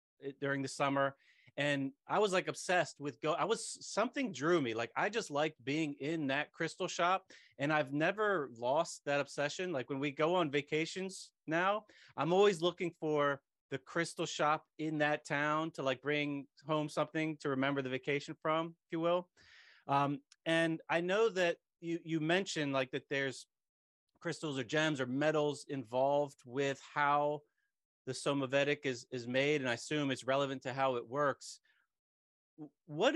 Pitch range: 135-165 Hz